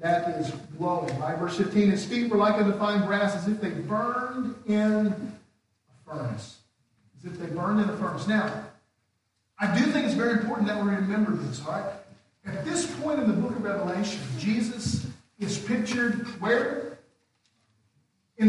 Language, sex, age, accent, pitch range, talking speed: English, male, 50-69, American, 180-230 Hz, 170 wpm